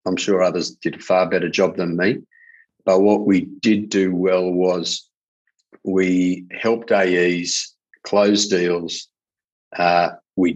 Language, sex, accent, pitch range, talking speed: English, male, Australian, 85-100 Hz, 135 wpm